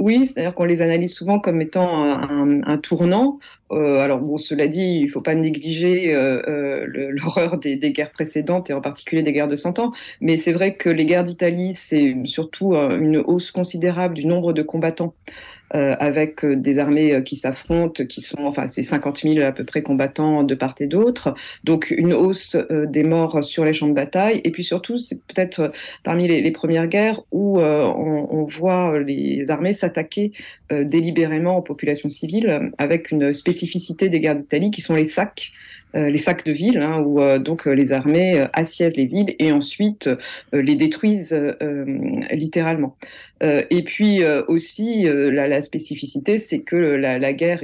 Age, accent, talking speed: 40-59, French, 190 wpm